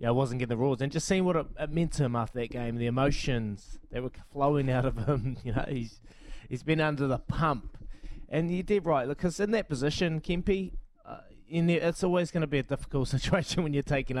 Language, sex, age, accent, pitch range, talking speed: English, male, 20-39, Australian, 120-155 Hz, 245 wpm